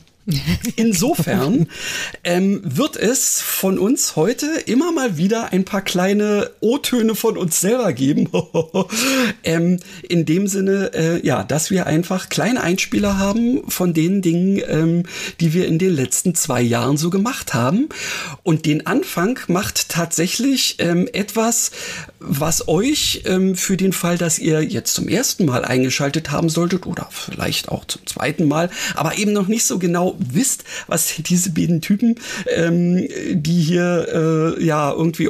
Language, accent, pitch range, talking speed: German, German, 160-210 Hz, 150 wpm